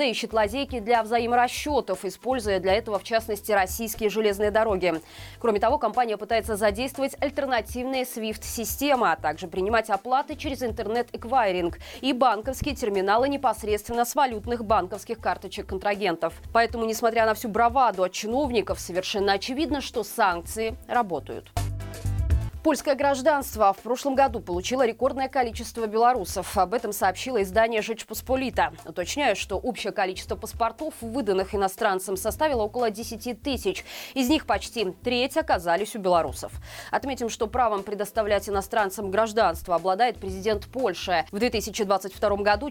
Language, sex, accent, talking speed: Russian, female, native, 125 wpm